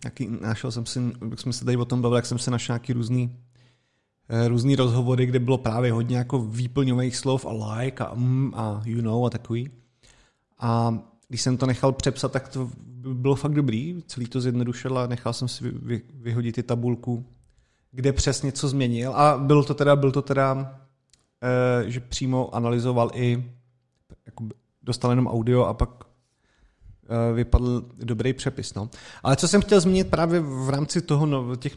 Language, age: Czech, 30-49